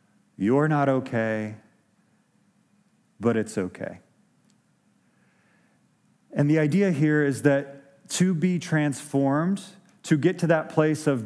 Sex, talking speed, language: male, 110 wpm, English